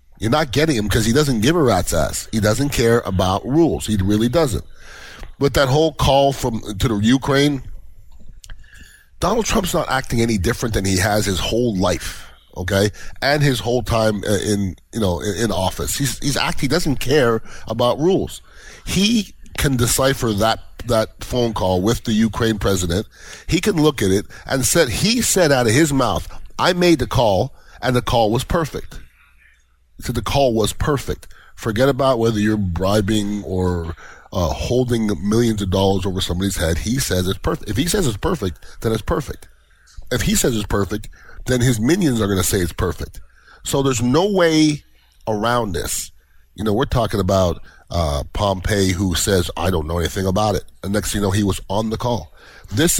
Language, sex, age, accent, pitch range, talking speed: English, male, 30-49, American, 95-125 Hz, 190 wpm